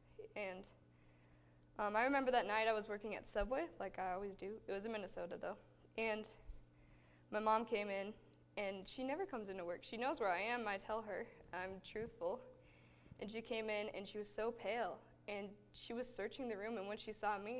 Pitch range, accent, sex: 180-225 Hz, American, female